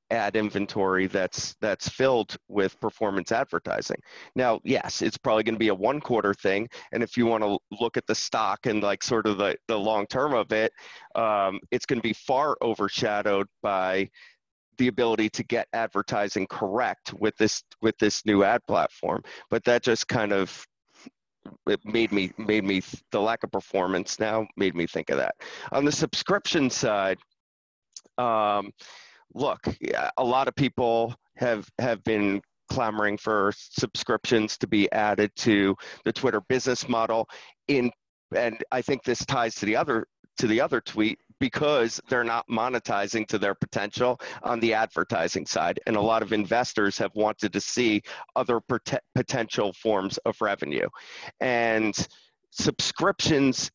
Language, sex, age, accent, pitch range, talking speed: English, male, 30-49, American, 105-125 Hz, 160 wpm